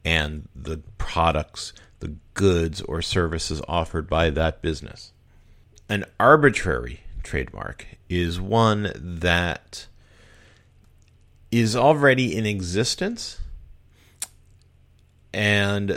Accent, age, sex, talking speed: American, 40-59, male, 85 wpm